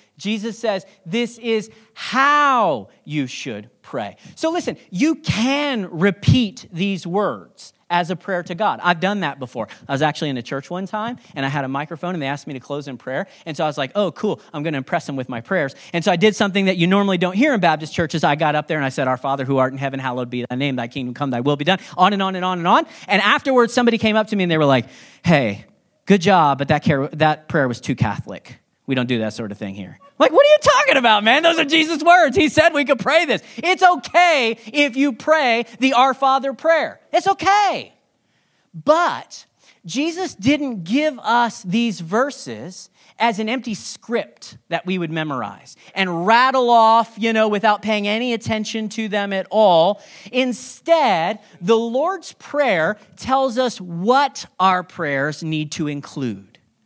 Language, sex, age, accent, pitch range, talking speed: English, male, 40-59, American, 155-255 Hz, 210 wpm